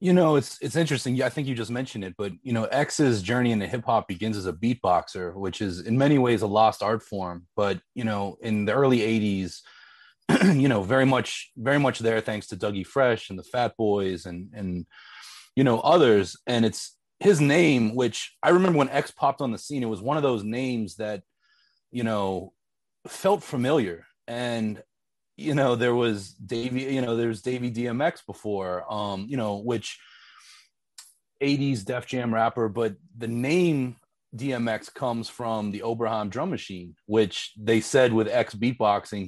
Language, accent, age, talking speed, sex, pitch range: English, American, 30-49, 180 wpm, male, 105-125 Hz